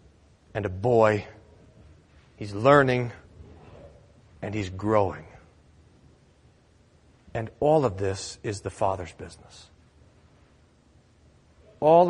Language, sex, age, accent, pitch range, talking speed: English, male, 40-59, American, 90-130 Hz, 85 wpm